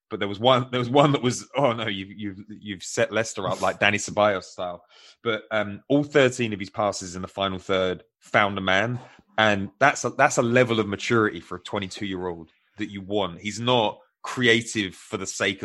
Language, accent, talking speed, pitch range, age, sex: English, British, 220 wpm, 95-120 Hz, 20-39, male